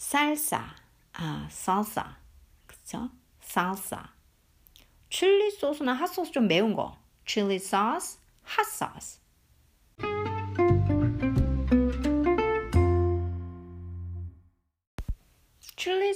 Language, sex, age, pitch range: Korean, female, 50-69, 180-290 Hz